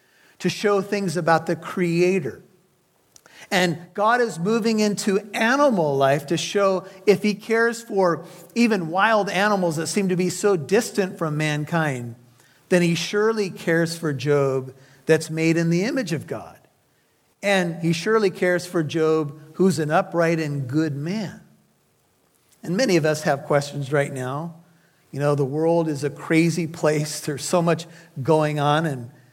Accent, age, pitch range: American, 50-69, 155-190 Hz